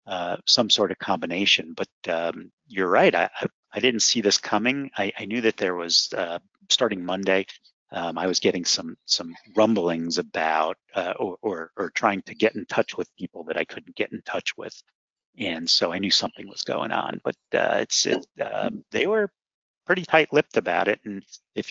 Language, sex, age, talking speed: English, male, 40-59, 200 wpm